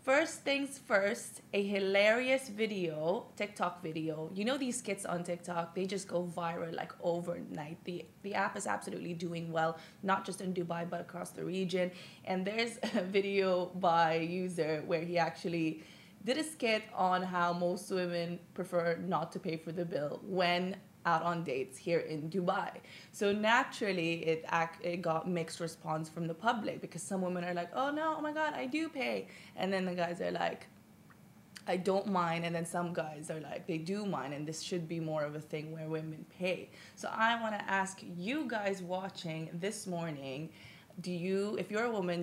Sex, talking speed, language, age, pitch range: female, 190 wpm, Arabic, 20-39, 165-200 Hz